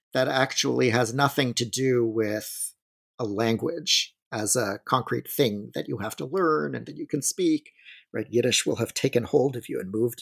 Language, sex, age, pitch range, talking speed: English, male, 40-59, 120-145 Hz, 195 wpm